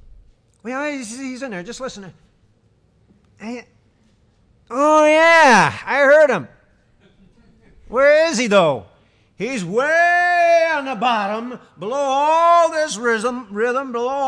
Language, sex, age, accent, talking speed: English, male, 50-69, American, 105 wpm